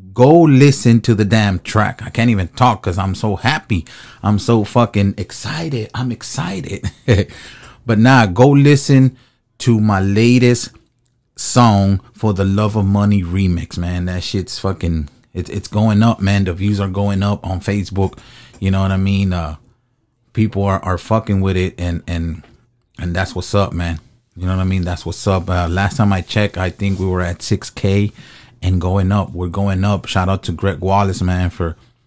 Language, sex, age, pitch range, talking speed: English, male, 30-49, 95-120 Hz, 195 wpm